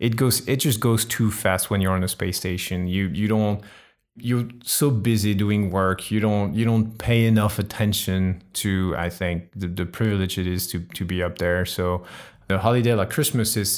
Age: 30-49